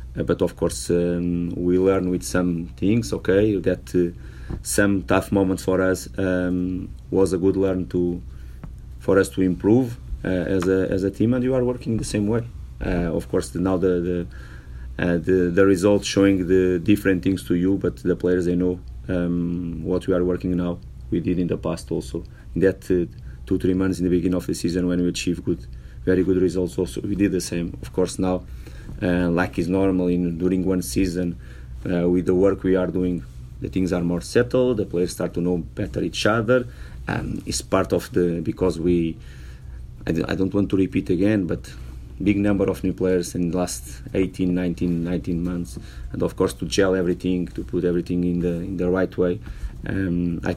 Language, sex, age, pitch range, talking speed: English, male, 30-49, 85-95 Hz, 205 wpm